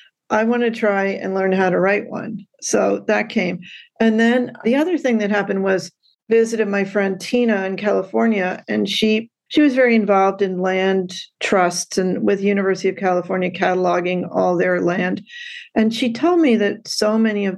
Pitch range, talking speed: 190-225 Hz, 180 wpm